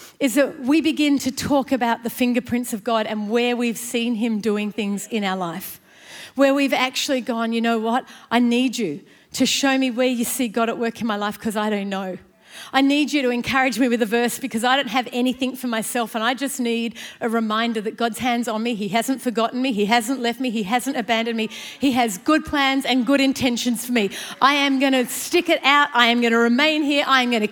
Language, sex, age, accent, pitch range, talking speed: English, female, 40-59, Australian, 225-270 Hz, 240 wpm